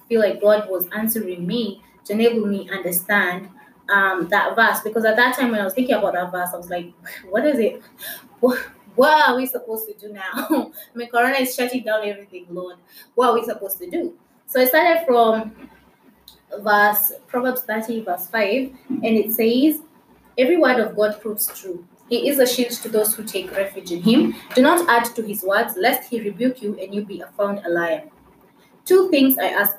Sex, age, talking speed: female, 20-39, 205 wpm